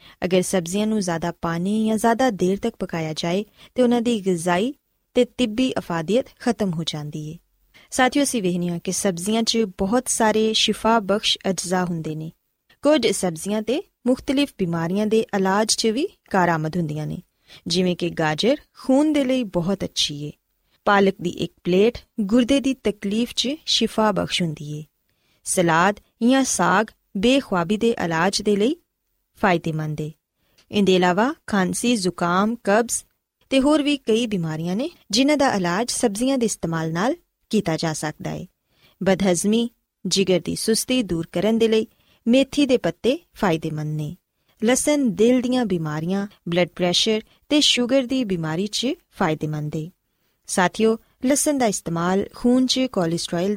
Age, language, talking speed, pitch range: 20-39, Punjabi, 145 wpm, 175-245 Hz